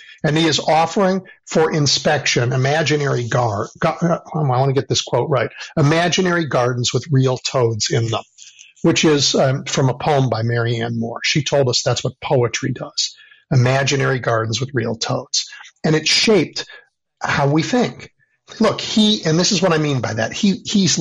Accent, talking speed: American, 175 wpm